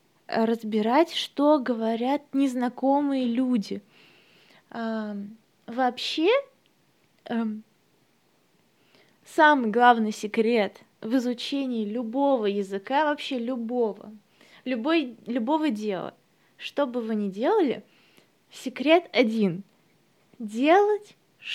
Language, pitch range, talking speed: Russian, 215-285 Hz, 70 wpm